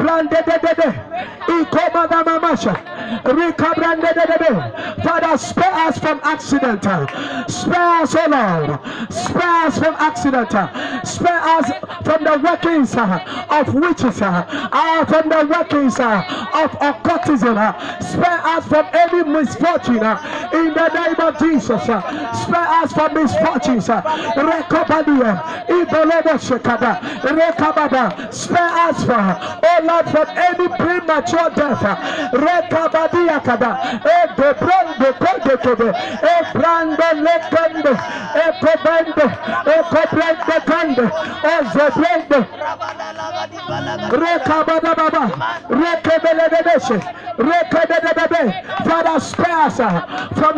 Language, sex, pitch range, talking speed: English, male, 285-330 Hz, 75 wpm